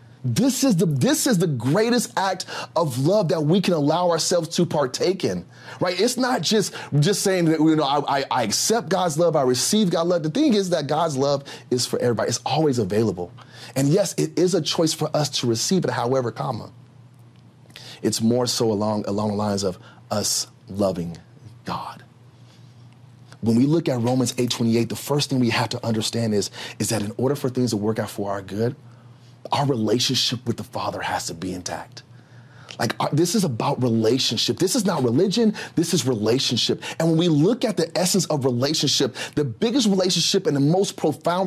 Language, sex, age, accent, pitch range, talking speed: English, male, 30-49, American, 120-170 Hz, 200 wpm